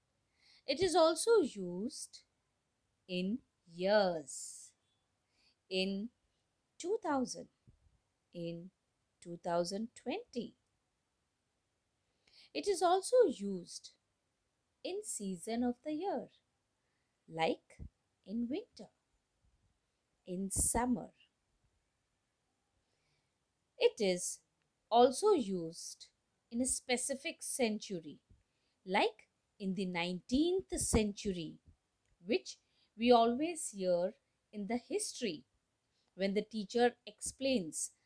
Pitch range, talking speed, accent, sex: 180-260 Hz, 80 wpm, native, female